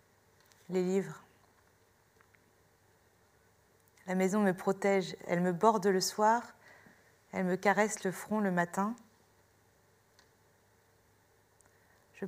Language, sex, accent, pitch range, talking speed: French, female, French, 175-215 Hz, 95 wpm